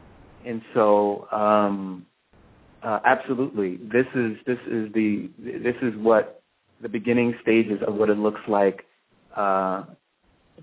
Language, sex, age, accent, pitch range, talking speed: English, male, 30-49, American, 100-110 Hz, 125 wpm